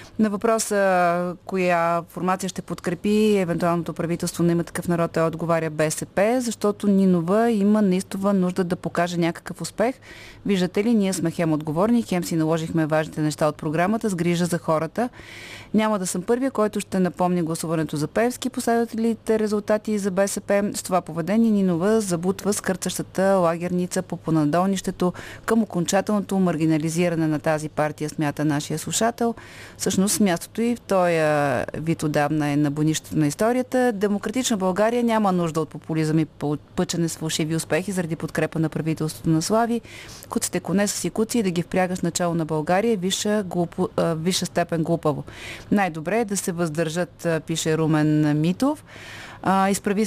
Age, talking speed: 30-49, 150 wpm